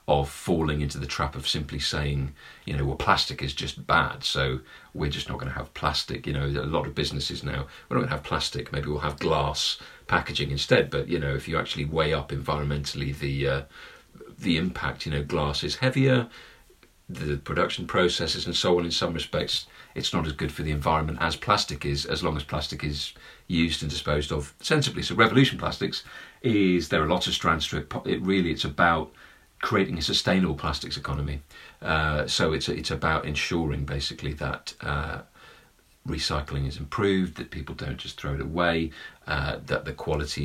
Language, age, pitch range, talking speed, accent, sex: English, 40-59, 70-85 Hz, 195 wpm, British, male